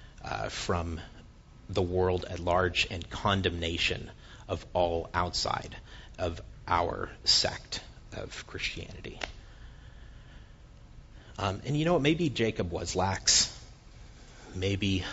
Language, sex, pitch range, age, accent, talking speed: English, male, 90-110 Hz, 30-49, American, 105 wpm